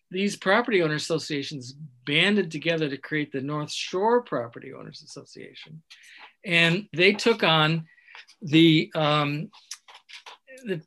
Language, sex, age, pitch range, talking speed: English, male, 50-69, 150-195 Hz, 115 wpm